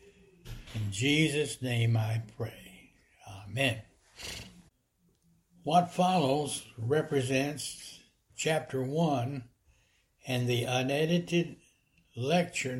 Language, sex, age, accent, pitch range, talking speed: English, male, 60-79, American, 120-160 Hz, 70 wpm